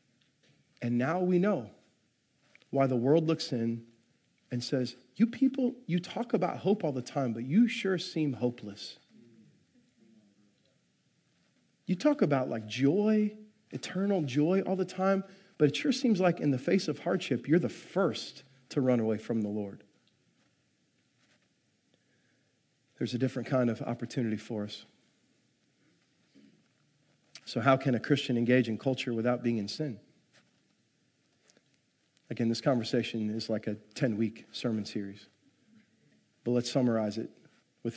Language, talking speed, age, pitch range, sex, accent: English, 140 wpm, 40-59, 115-150 Hz, male, American